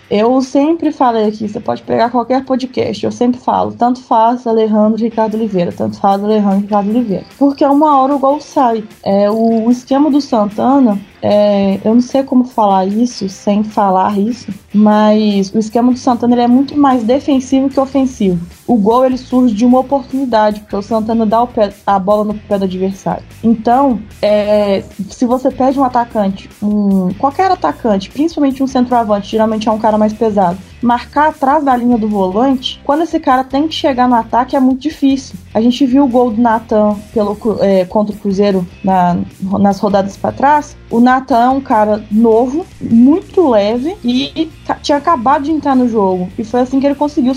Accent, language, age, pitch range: Brazilian, Portuguese, 20-39, 210-265 Hz